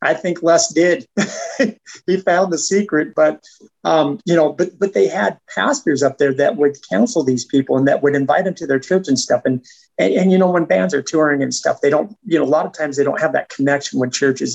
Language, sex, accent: English, male, American